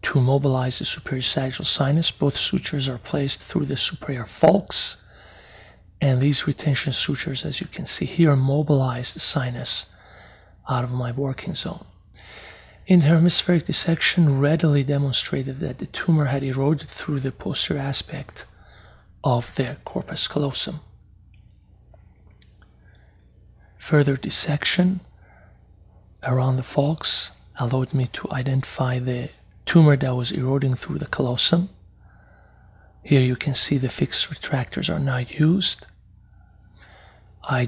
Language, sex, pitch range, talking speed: English, male, 110-150 Hz, 120 wpm